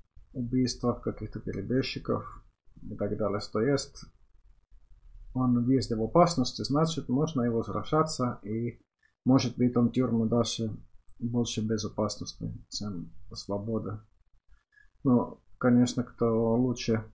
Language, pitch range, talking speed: Finnish, 110-130 Hz, 105 wpm